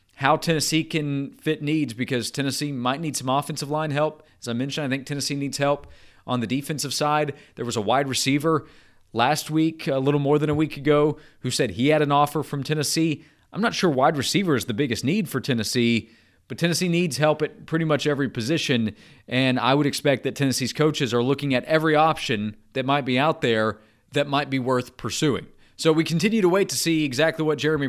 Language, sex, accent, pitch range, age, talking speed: English, male, American, 130-160 Hz, 30-49, 215 wpm